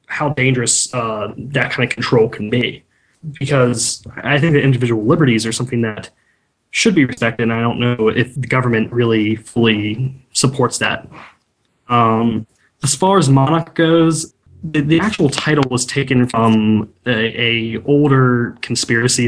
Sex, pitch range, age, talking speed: male, 115-140 Hz, 20-39, 155 wpm